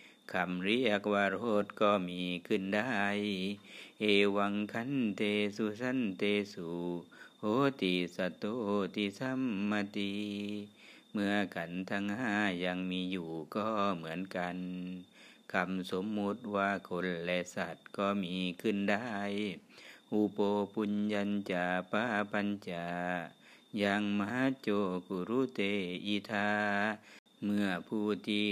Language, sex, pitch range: Thai, male, 95-105 Hz